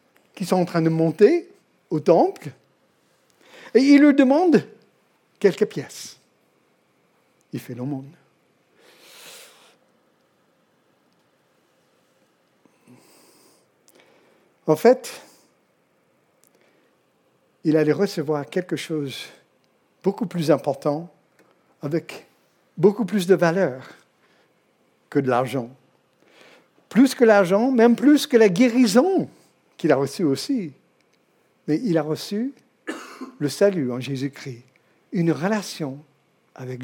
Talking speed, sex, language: 95 wpm, male, French